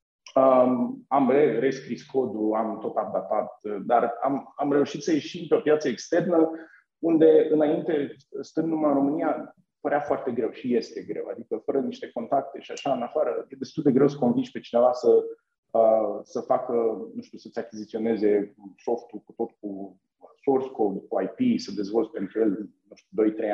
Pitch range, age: 115-155 Hz, 30-49